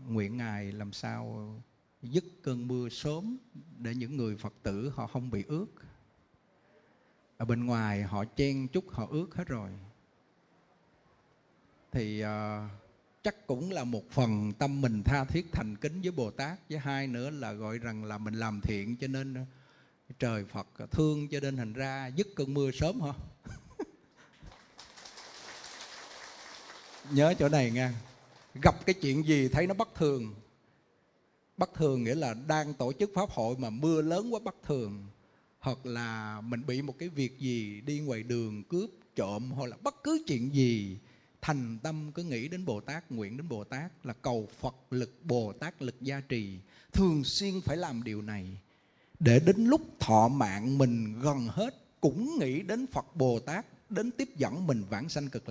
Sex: male